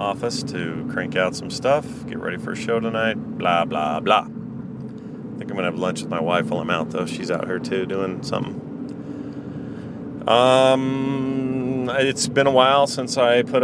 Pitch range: 90-125 Hz